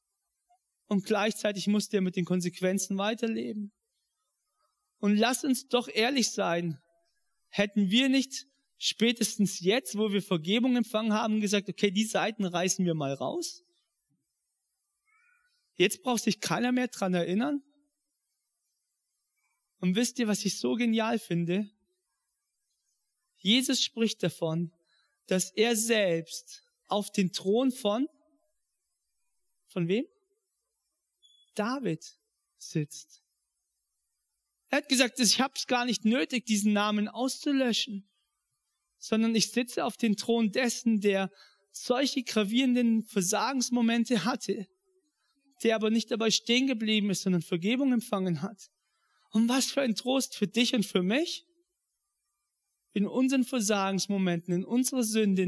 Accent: German